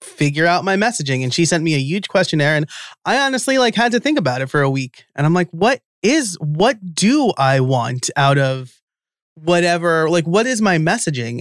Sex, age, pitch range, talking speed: male, 30-49, 135-175 Hz, 210 wpm